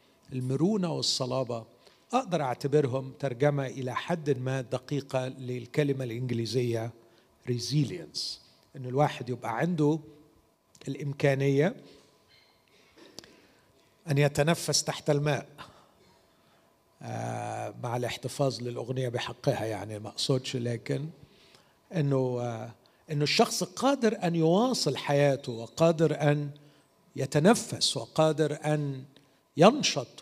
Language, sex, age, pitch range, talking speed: Arabic, male, 50-69, 130-160 Hz, 85 wpm